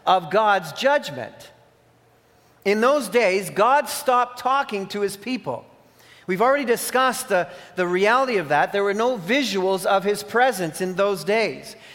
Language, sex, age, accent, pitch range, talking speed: English, male, 40-59, American, 195-240 Hz, 150 wpm